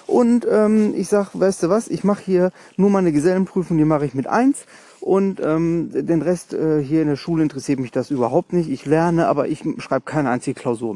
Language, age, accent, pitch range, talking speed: German, 40-59, German, 150-225 Hz, 220 wpm